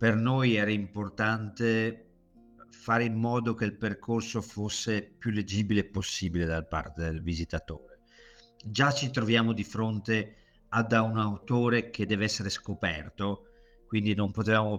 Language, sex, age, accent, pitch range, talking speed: Italian, male, 50-69, native, 95-115 Hz, 135 wpm